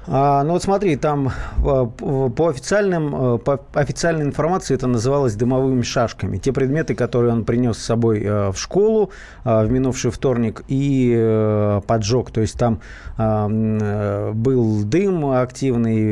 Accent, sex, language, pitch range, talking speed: native, male, Russian, 115-140 Hz, 125 wpm